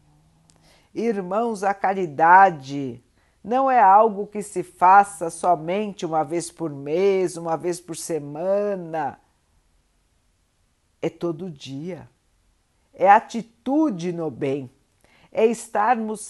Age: 50-69